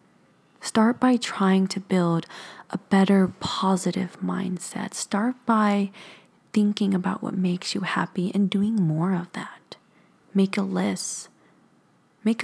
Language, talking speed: English, 125 wpm